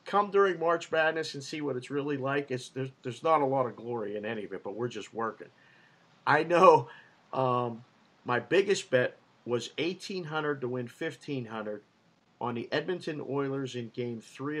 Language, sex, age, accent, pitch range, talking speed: English, male, 50-69, American, 115-145 Hz, 190 wpm